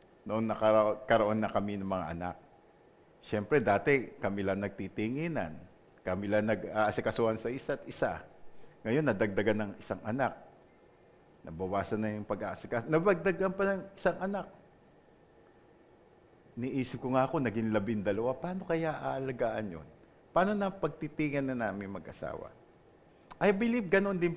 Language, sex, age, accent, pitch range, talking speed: English, male, 50-69, Filipino, 105-165 Hz, 130 wpm